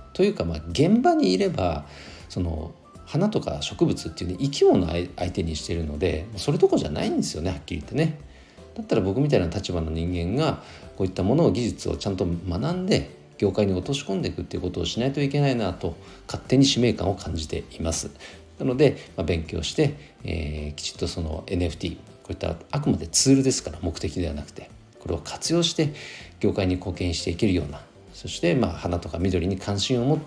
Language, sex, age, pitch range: Japanese, male, 50-69, 80-115 Hz